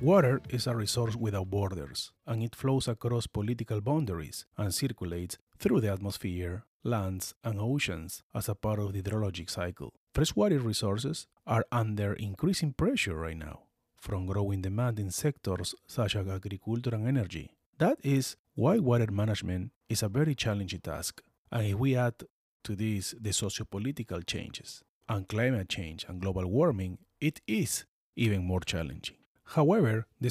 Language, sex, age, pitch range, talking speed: English, male, 30-49, 100-130 Hz, 150 wpm